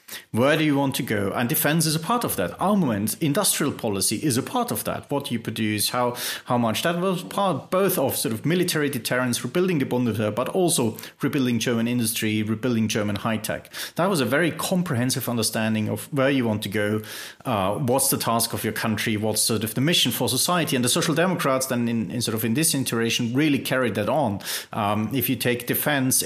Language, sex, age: English, male, 30-49